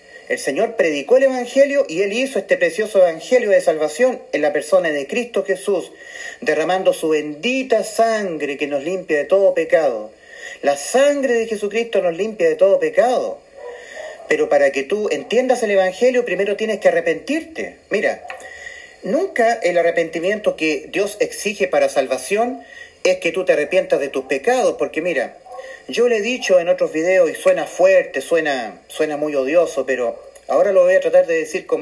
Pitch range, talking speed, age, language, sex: 175-285 Hz, 170 wpm, 40-59, Spanish, male